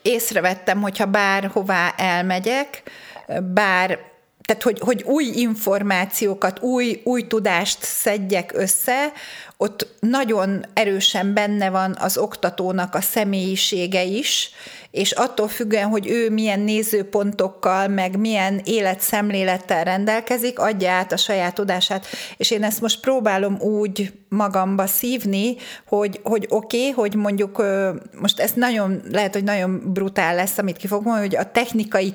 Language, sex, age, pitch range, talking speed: Hungarian, female, 30-49, 190-220 Hz, 125 wpm